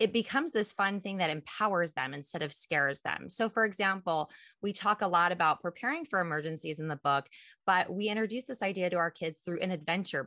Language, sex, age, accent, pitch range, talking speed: English, female, 20-39, American, 170-225 Hz, 215 wpm